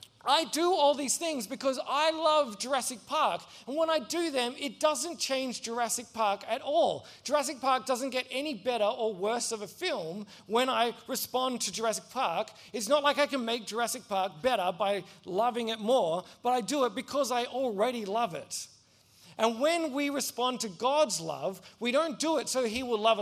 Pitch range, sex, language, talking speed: 215-265 Hz, male, English, 195 wpm